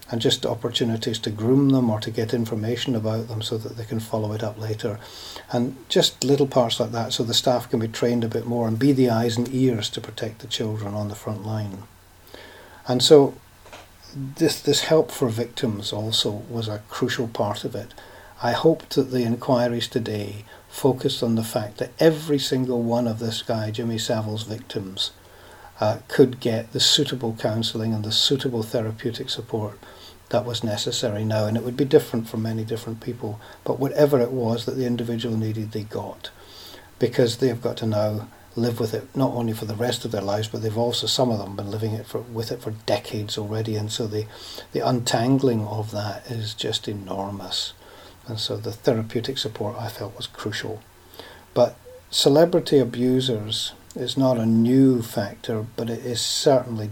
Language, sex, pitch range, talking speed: English, male, 110-125 Hz, 190 wpm